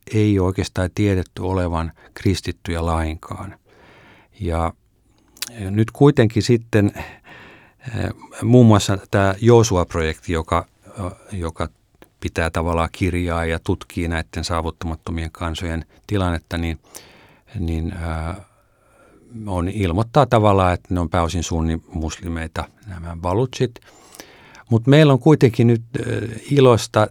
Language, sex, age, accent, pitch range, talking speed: Finnish, male, 50-69, native, 85-115 Hz, 100 wpm